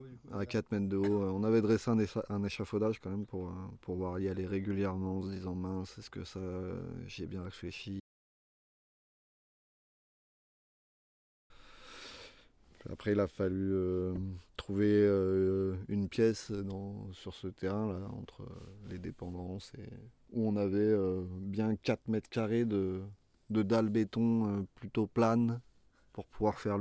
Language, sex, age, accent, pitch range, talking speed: French, male, 20-39, French, 95-110 Hz, 150 wpm